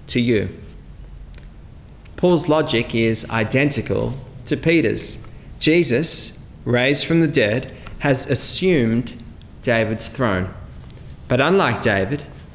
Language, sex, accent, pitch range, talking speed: English, male, Australian, 105-125 Hz, 95 wpm